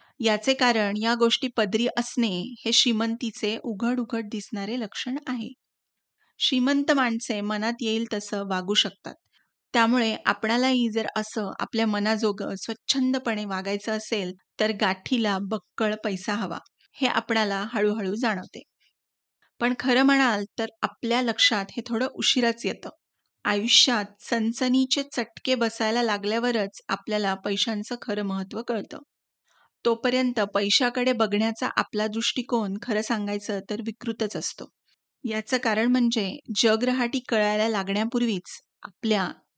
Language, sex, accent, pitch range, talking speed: Marathi, female, native, 215-250 Hz, 115 wpm